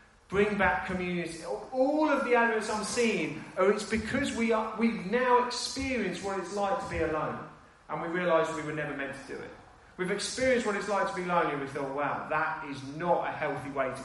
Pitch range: 150-200 Hz